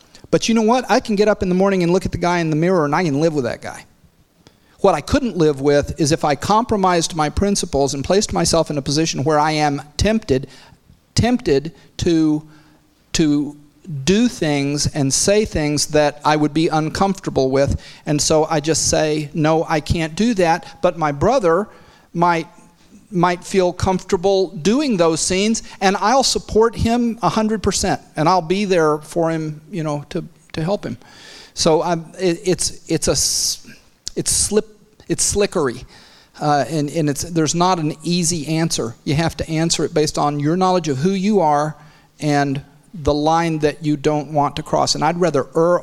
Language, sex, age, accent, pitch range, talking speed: English, male, 40-59, American, 150-185 Hz, 190 wpm